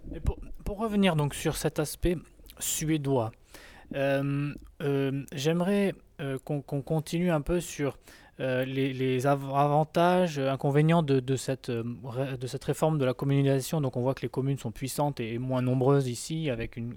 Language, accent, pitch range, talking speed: French, French, 125-155 Hz, 165 wpm